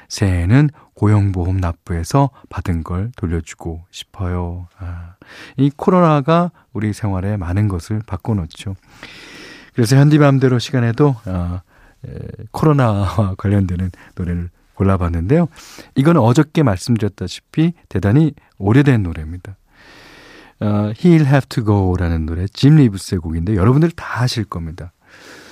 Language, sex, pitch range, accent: Korean, male, 95-145 Hz, native